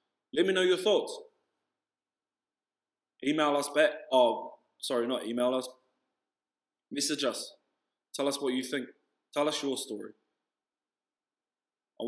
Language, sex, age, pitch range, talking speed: English, male, 20-39, 115-145 Hz, 125 wpm